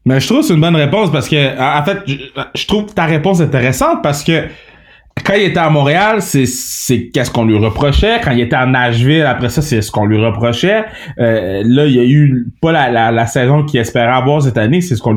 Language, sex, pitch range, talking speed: French, male, 115-150 Hz, 240 wpm